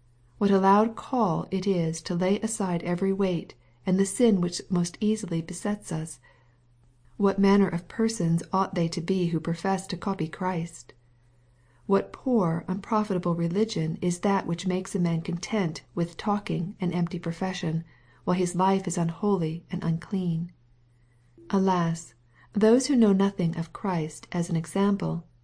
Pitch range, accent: 160-195 Hz, American